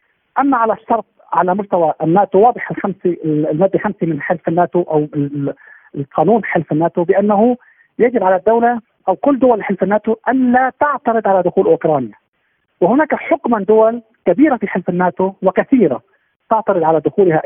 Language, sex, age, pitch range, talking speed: Arabic, male, 50-69, 175-225 Hz, 150 wpm